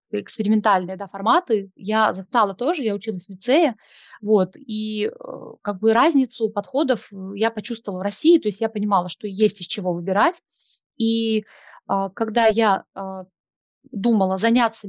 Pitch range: 195-240 Hz